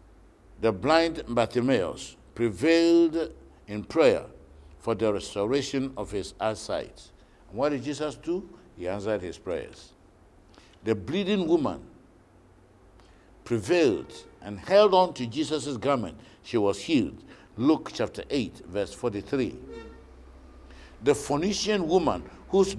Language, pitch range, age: English, 95-150 Hz, 60-79